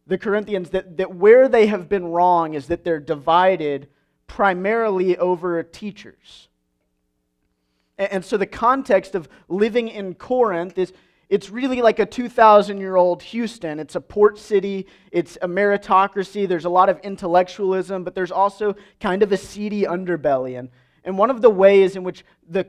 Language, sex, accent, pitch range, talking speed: English, male, American, 165-210 Hz, 160 wpm